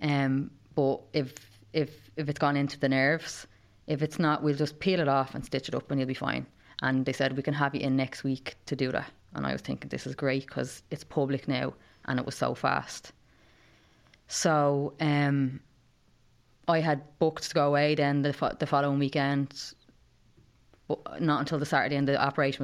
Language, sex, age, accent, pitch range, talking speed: English, female, 20-39, Irish, 130-145 Hz, 205 wpm